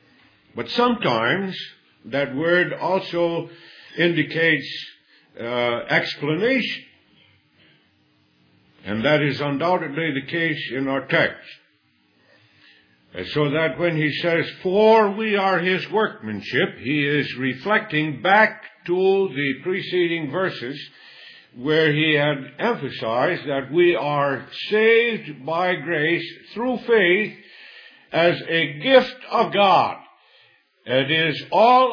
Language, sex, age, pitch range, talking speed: English, male, 60-79, 115-190 Hz, 105 wpm